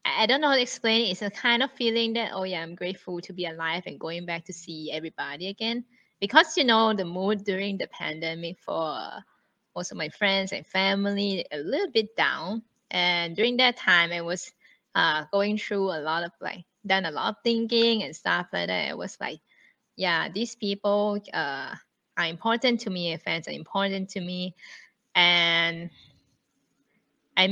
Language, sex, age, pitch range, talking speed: English, female, 20-39, 170-225 Hz, 190 wpm